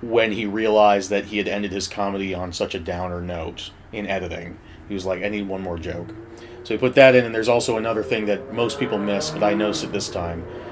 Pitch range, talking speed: 95-105 Hz, 245 wpm